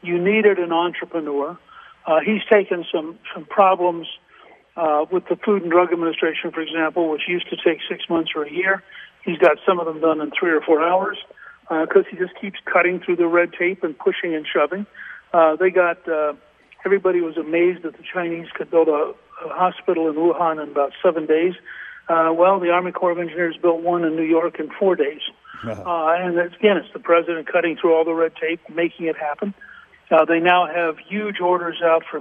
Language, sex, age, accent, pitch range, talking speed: English, male, 60-79, American, 165-185 Hz, 210 wpm